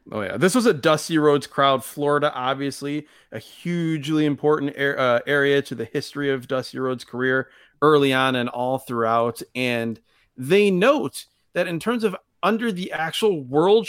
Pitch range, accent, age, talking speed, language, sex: 135-185 Hz, American, 30-49, 170 wpm, English, male